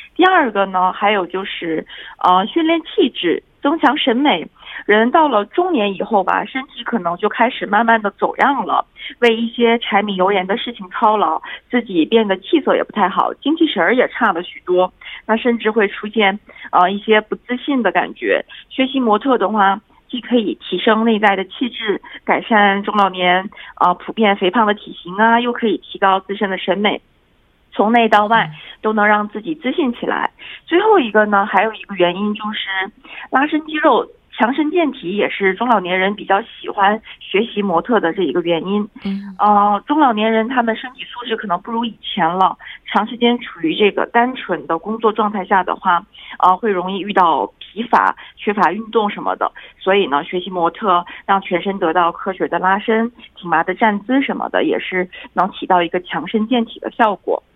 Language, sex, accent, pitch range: Korean, female, Chinese, 190-245 Hz